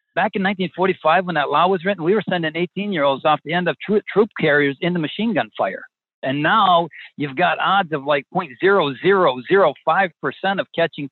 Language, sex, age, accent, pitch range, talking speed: English, male, 60-79, American, 145-185 Hz, 180 wpm